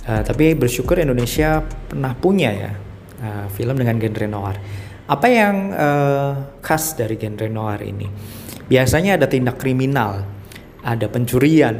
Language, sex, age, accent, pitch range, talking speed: Indonesian, male, 20-39, native, 110-135 Hz, 130 wpm